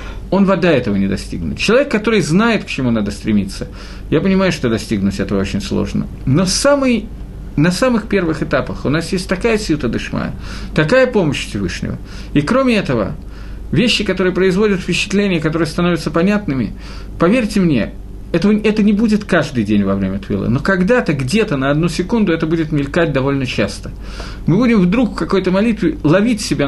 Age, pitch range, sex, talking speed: 50-69, 135-205 Hz, male, 165 wpm